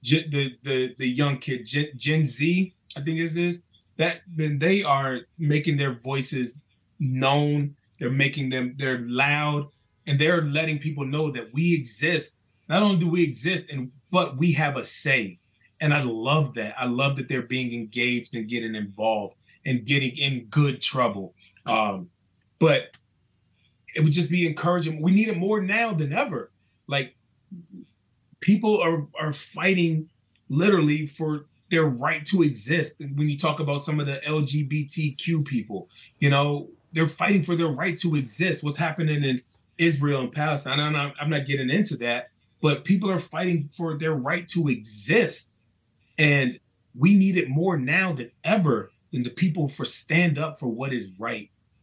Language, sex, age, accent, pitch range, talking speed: English, male, 30-49, American, 125-160 Hz, 170 wpm